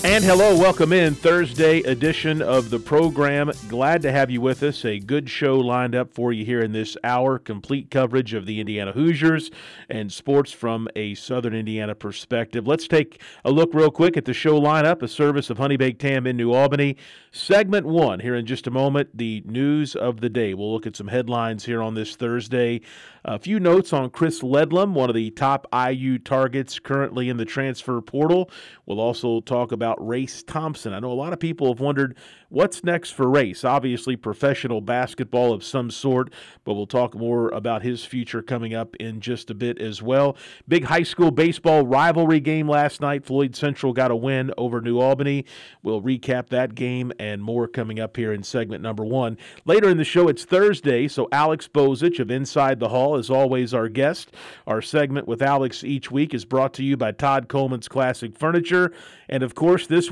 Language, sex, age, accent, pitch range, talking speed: English, male, 40-59, American, 120-150 Hz, 200 wpm